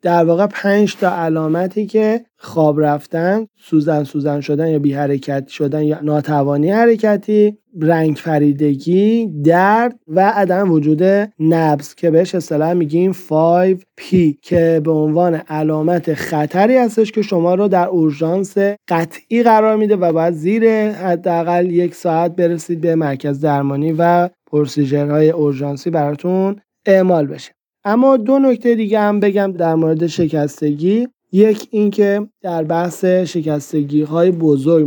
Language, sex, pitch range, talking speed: Persian, male, 155-200 Hz, 130 wpm